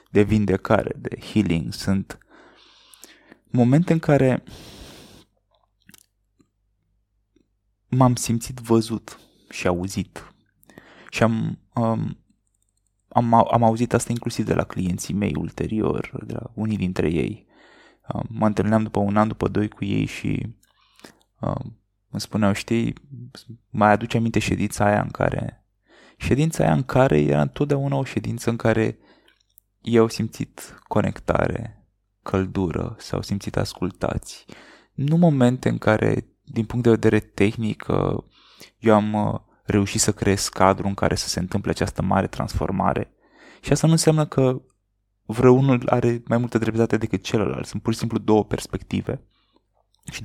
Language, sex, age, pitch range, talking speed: Romanian, male, 20-39, 100-120 Hz, 130 wpm